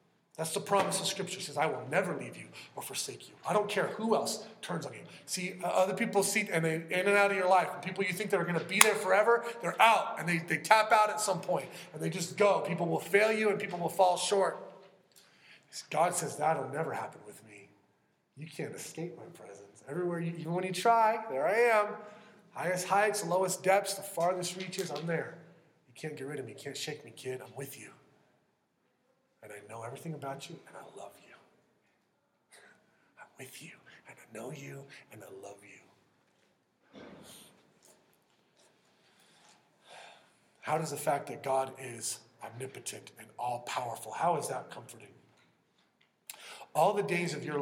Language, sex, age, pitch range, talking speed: English, male, 30-49, 145-195 Hz, 195 wpm